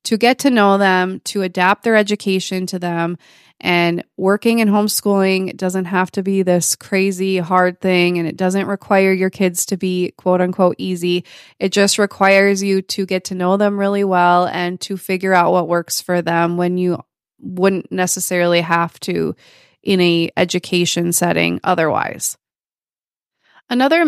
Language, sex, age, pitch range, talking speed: English, female, 20-39, 180-210 Hz, 160 wpm